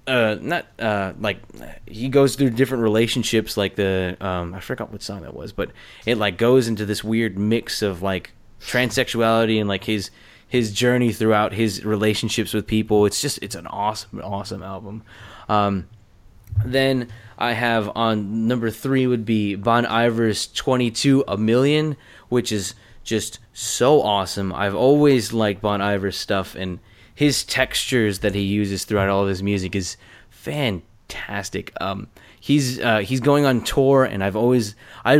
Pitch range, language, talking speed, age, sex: 100-125 Hz, English, 160 wpm, 20-39, male